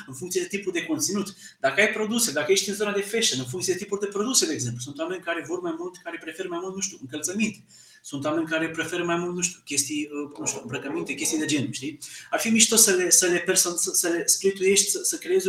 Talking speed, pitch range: 260 wpm, 165-215 Hz